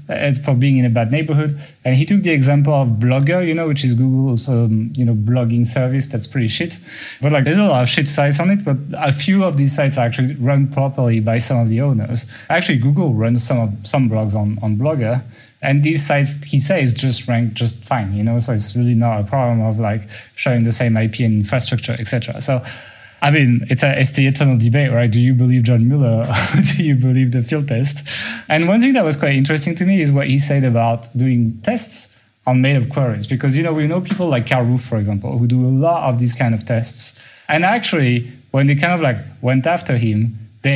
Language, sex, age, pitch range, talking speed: English, male, 30-49, 120-145 Hz, 230 wpm